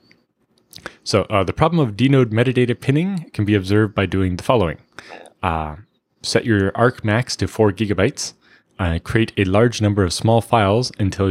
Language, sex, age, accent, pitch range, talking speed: English, male, 20-39, American, 90-110 Hz, 170 wpm